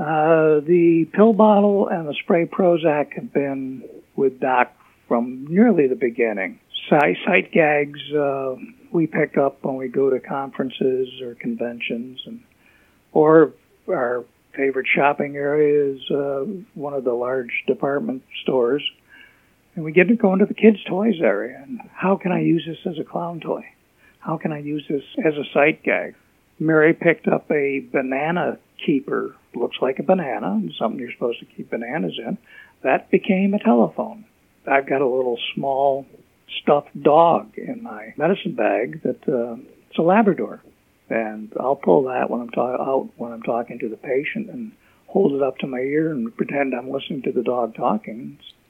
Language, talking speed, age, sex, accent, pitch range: English, 175 wpm, 60-79, male, American, 135-190 Hz